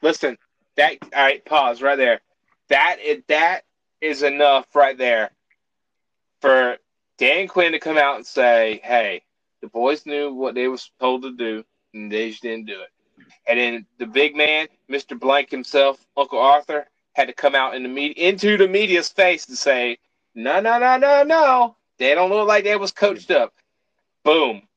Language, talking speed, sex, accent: English, 180 wpm, male, American